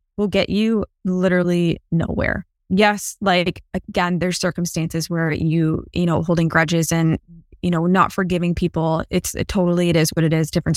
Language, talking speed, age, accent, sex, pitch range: English, 175 wpm, 20-39, American, female, 170-190 Hz